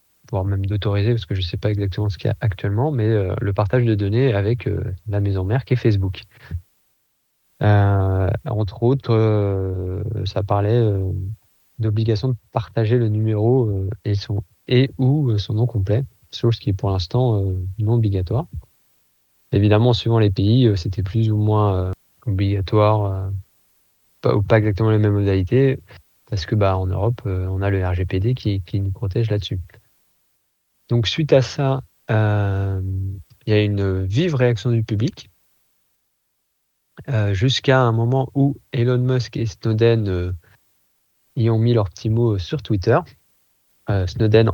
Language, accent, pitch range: French, French, 100-115 Hz